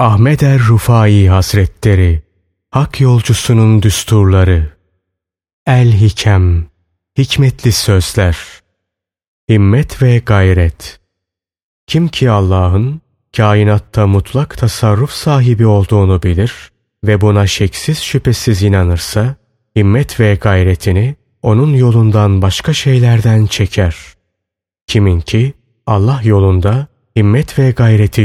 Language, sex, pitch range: Turkish, male, 95-120 Hz